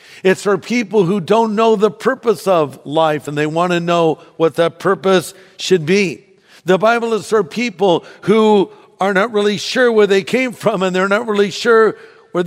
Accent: American